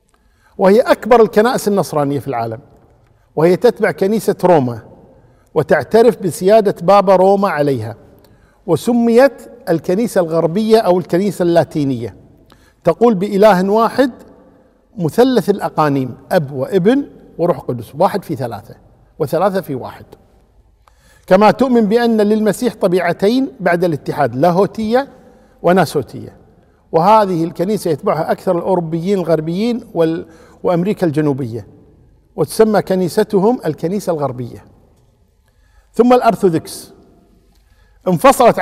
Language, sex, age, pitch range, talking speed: Arabic, male, 50-69, 145-215 Hz, 95 wpm